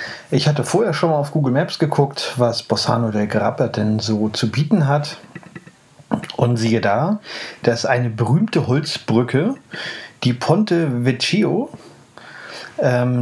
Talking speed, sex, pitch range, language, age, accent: 135 wpm, male, 120-155 Hz, German, 30-49, German